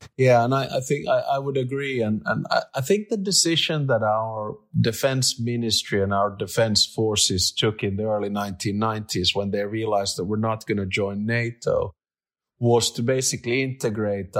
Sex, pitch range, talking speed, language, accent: male, 105-120 Hz, 180 wpm, English, Finnish